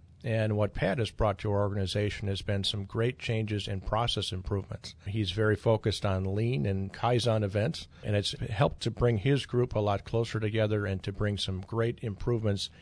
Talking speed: 190 wpm